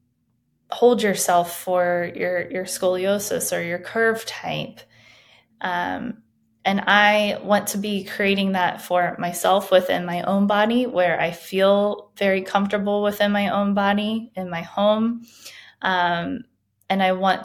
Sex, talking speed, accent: female, 140 wpm, American